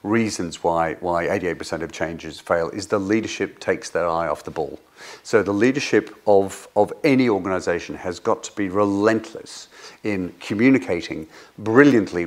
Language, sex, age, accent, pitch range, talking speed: English, male, 50-69, British, 95-120 Hz, 150 wpm